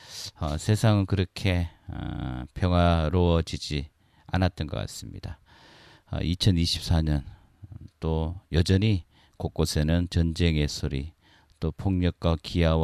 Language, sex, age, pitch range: Korean, male, 40-59, 75-95 Hz